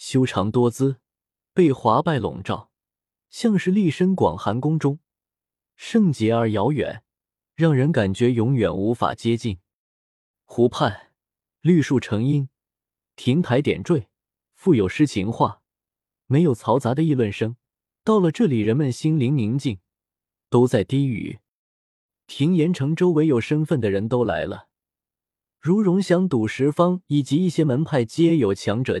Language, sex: Chinese, male